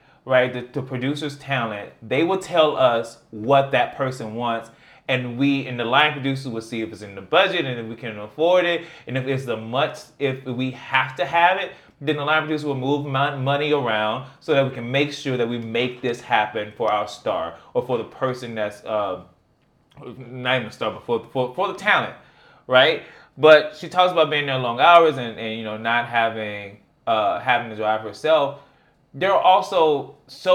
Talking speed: 205 wpm